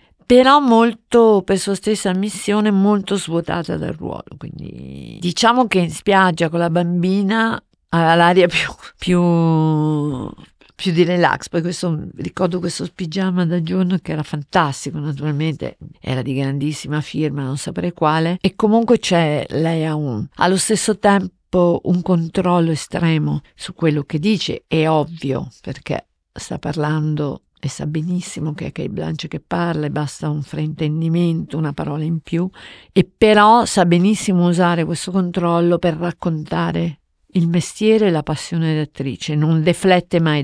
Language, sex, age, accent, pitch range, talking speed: Italian, female, 50-69, native, 155-180 Hz, 145 wpm